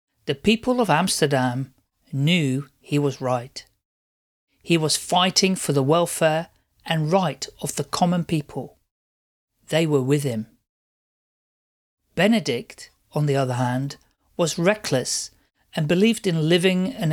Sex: male